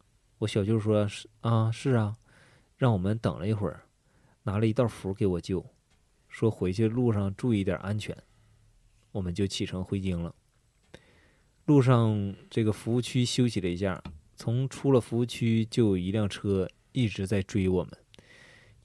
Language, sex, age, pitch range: Chinese, male, 20-39, 100-120 Hz